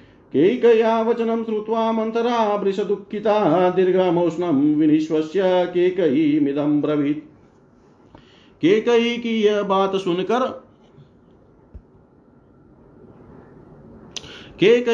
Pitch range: 175-235 Hz